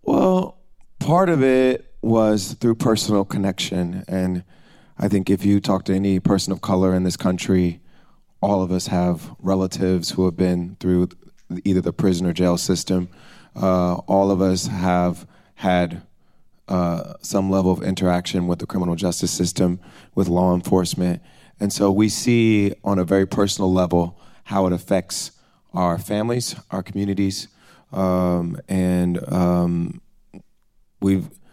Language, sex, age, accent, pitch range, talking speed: English, male, 20-39, American, 90-105 Hz, 145 wpm